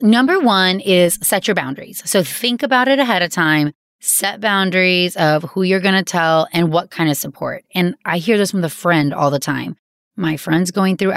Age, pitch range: 20-39, 155-205 Hz